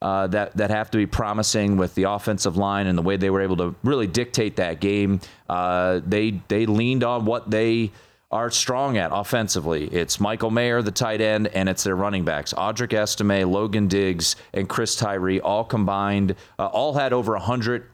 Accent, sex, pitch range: American, male, 95-120 Hz